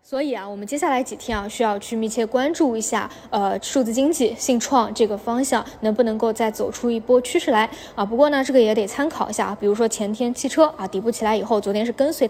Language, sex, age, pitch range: Chinese, female, 20-39, 210-255 Hz